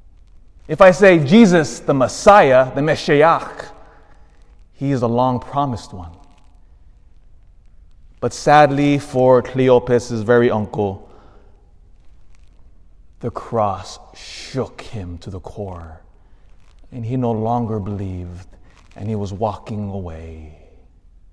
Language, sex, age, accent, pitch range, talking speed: English, male, 30-49, American, 85-120 Hz, 100 wpm